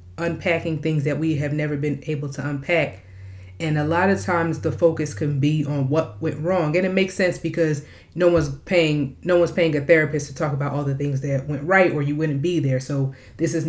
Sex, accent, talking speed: female, American, 230 wpm